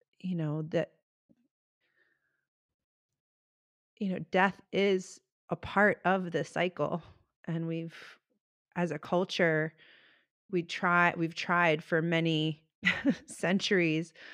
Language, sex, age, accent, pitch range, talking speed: English, female, 30-49, American, 155-185 Hz, 100 wpm